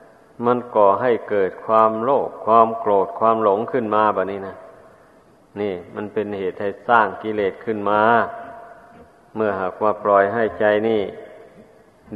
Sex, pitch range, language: male, 105-115 Hz, Thai